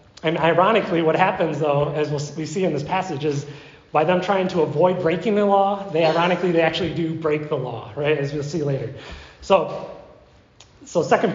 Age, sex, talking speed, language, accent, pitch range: 30-49, male, 190 wpm, English, American, 155-195 Hz